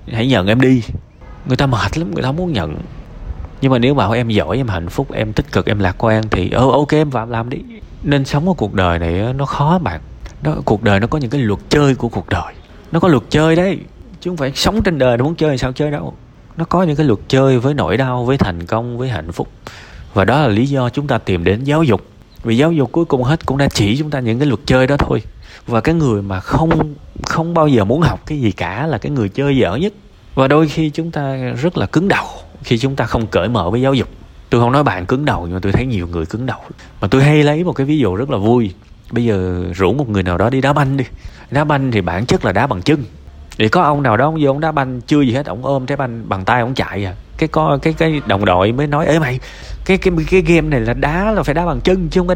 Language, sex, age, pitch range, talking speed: Vietnamese, male, 20-39, 105-150 Hz, 280 wpm